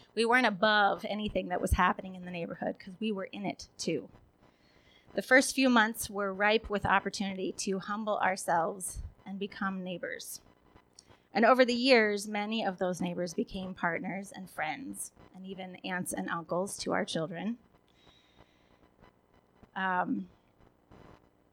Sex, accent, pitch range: female, American, 180-215 Hz